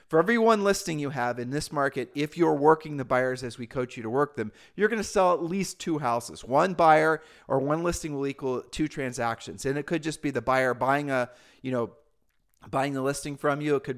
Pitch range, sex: 125-160 Hz, male